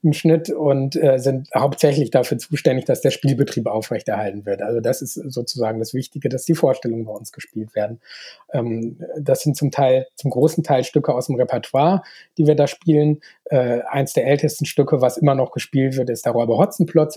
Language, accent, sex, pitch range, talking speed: English, German, male, 125-150 Hz, 195 wpm